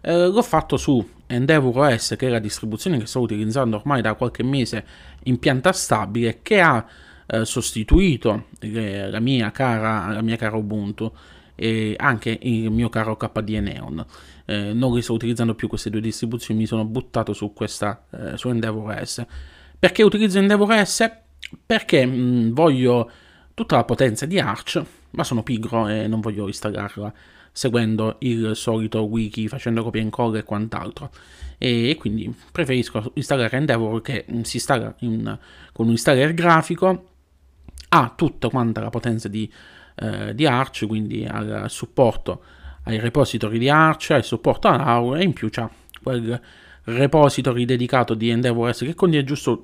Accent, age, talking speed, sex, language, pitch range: native, 20-39, 155 wpm, male, Italian, 110-130 Hz